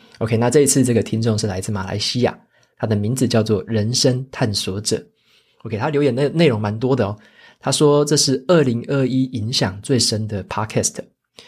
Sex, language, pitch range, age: male, Chinese, 105-125 Hz, 20-39